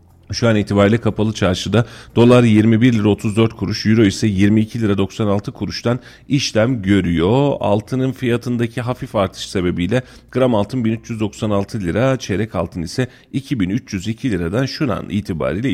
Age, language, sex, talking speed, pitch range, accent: 40-59, Turkish, male, 135 wpm, 95-125 Hz, native